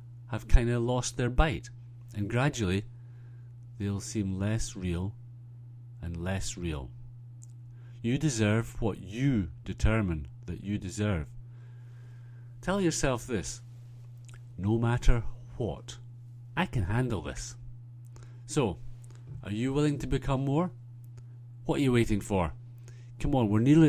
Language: English